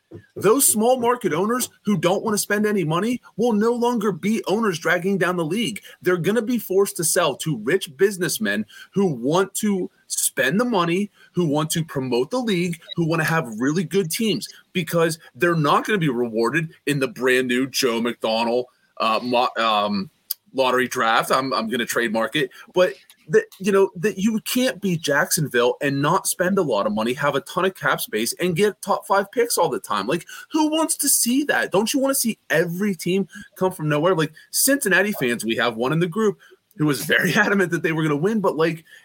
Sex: male